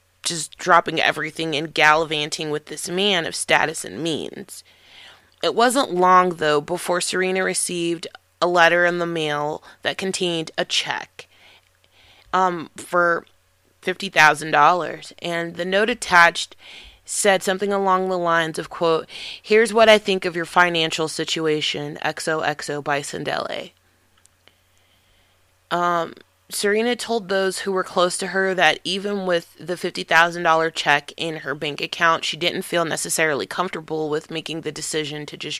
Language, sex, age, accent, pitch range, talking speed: English, female, 20-39, American, 150-185 Hz, 140 wpm